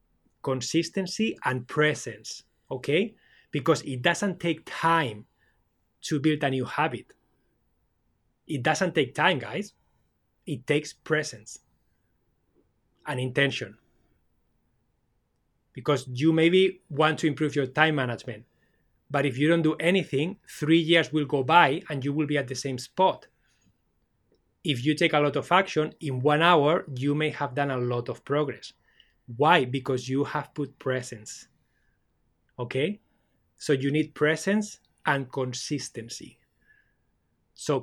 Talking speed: 135 wpm